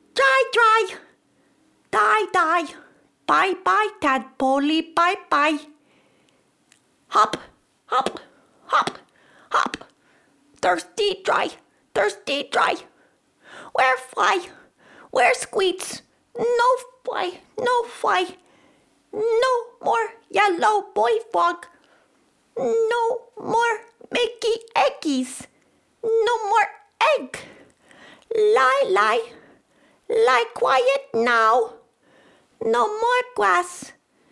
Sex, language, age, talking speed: female, English, 40-59, 80 wpm